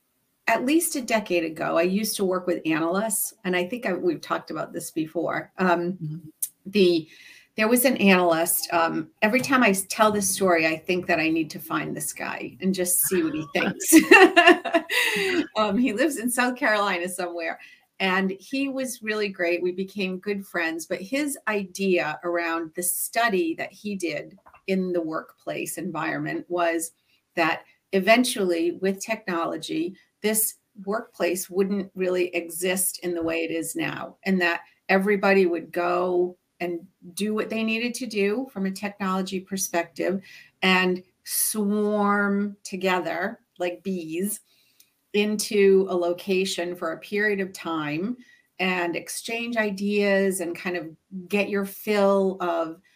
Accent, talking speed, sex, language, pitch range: American, 150 wpm, female, English, 175-210 Hz